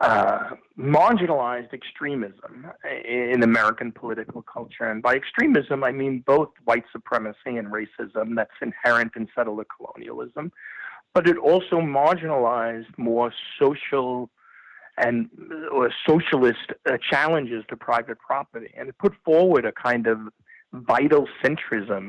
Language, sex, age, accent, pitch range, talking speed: English, male, 40-59, American, 110-135 Hz, 120 wpm